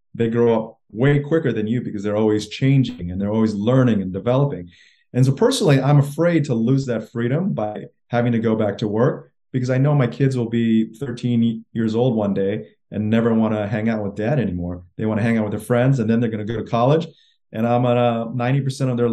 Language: English